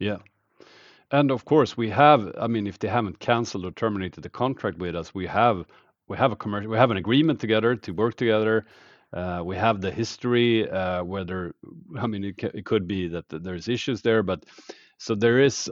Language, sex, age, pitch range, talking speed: English, male, 40-59, 100-120 Hz, 205 wpm